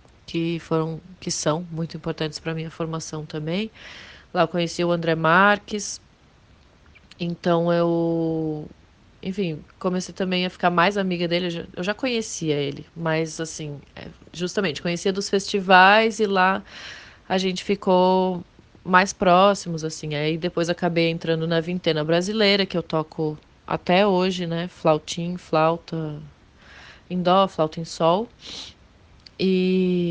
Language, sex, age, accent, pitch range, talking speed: Portuguese, female, 20-39, Brazilian, 165-195 Hz, 140 wpm